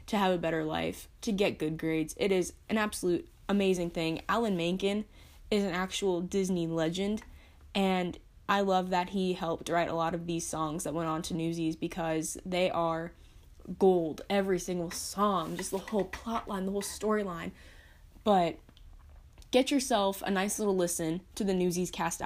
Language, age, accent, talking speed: English, 10-29, American, 175 wpm